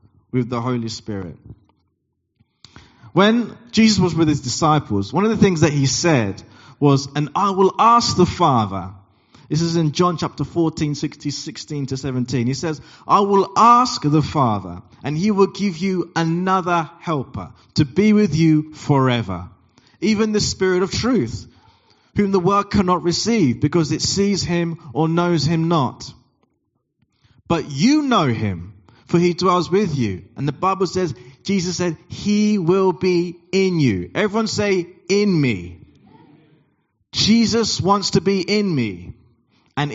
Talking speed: 155 wpm